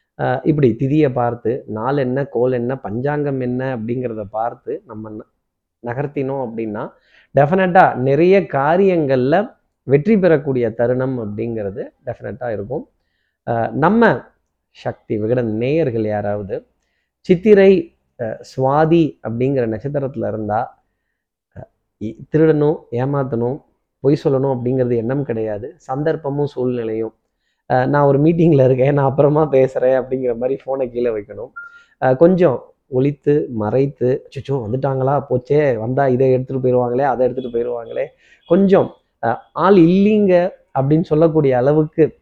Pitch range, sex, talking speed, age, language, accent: 125-160 Hz, male, 105 wpm, 30-49, Tamil, native